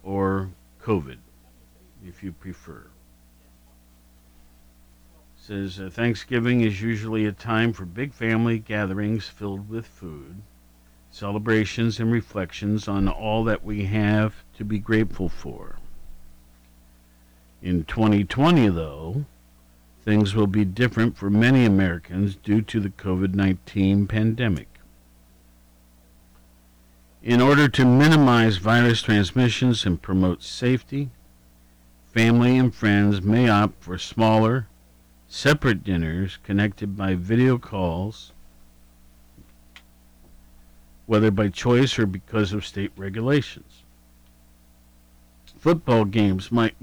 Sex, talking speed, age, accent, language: male, 105 wpm, 50-69, American, English